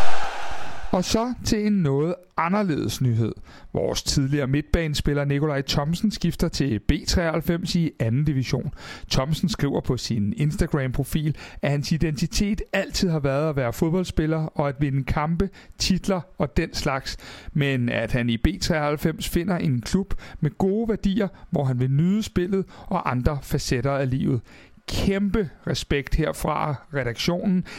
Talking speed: 140 wpm